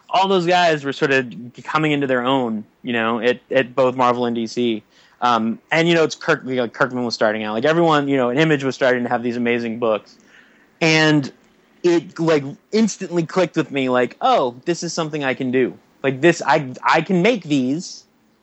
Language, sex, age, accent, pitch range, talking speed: English, male, 30-49, American, 125-160 Hz, 205 wpm